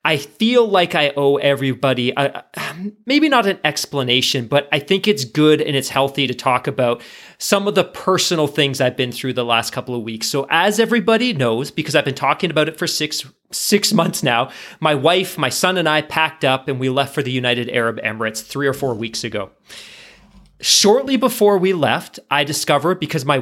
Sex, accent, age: male, American, 30-49